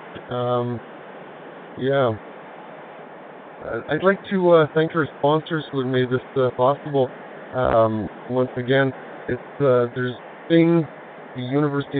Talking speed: 120 wpm